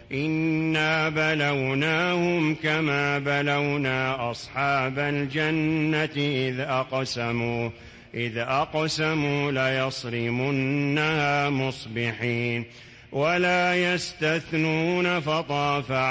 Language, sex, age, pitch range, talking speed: English, male, 40-59, 120-155 Hz, 55 wpm